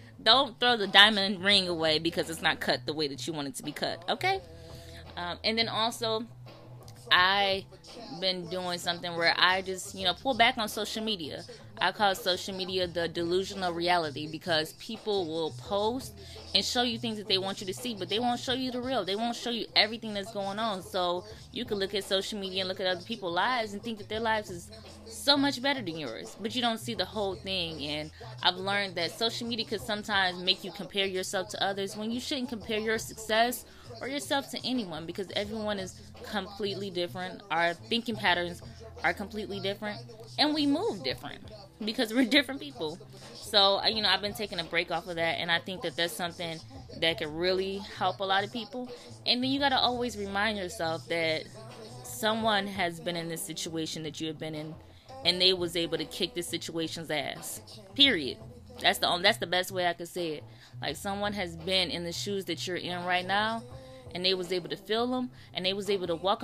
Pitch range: 170-215 Hz